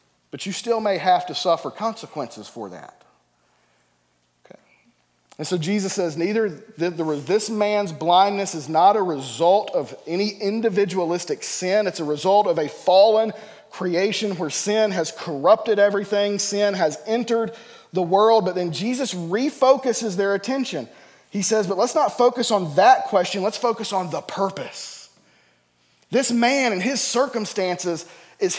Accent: American